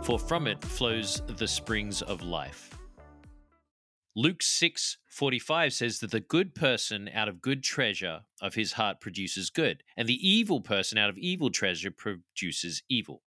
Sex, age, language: male, 40-59, English